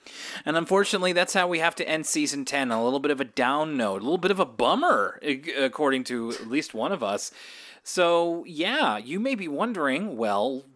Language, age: English, 30-49